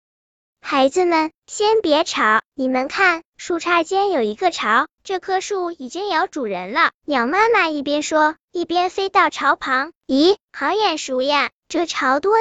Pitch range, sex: 270-360 Hz, male